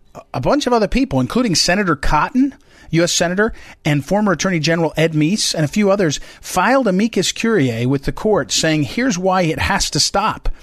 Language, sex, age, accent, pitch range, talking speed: English, male, 40-59, American, 130-190 Hz, 185 wpm